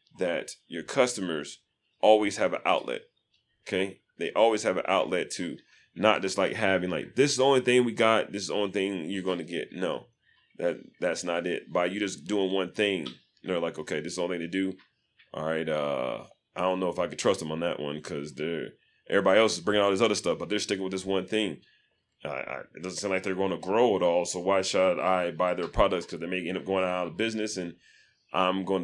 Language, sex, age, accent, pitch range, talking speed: English, male, 30-49, American, 90-100 Hz, 245 wpm